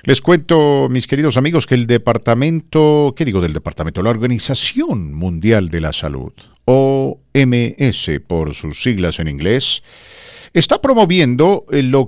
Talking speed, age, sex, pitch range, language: 135 wpm, 50-69, male, 90-145 Hz, English